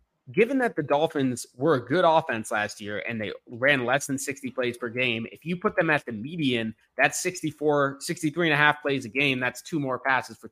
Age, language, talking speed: 20-39, English, 230 wpm